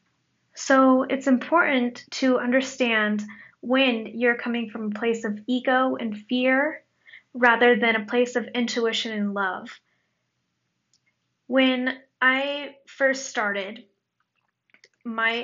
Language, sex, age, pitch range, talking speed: English, female, 10-29, 225-265 Hz, 110 wpm